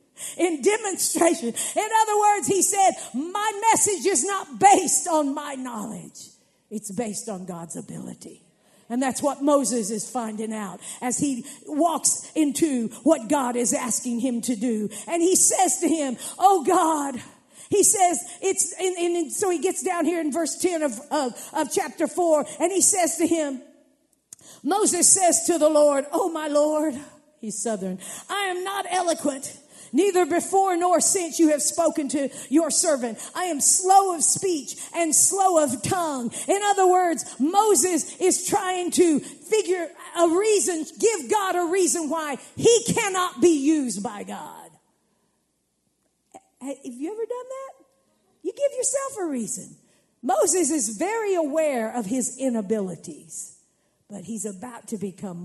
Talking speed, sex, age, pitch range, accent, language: 155 wpm, female, 50-69, 260-360 Hz, American, English